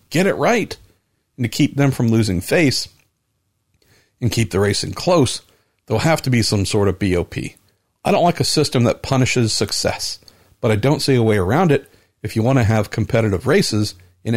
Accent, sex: American, male